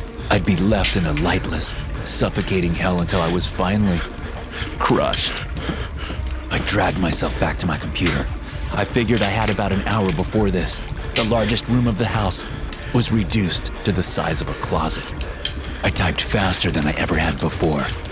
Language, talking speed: English, 170 wpm